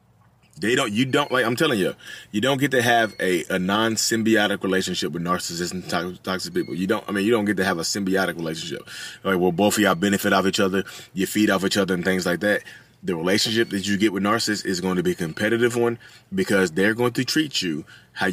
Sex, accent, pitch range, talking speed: male, American, 95-120 Hz, 240 wpm